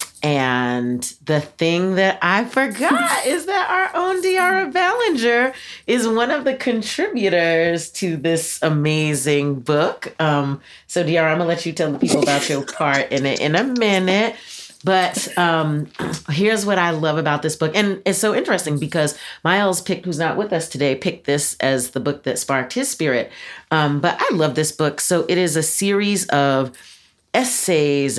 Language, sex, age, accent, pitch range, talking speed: English, female, 40-59, American, 135-180 Hz, 175 wpm